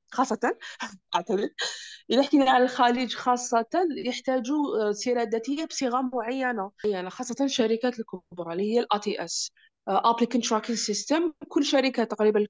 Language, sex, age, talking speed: Arabic, female, 20-39, 130 wpm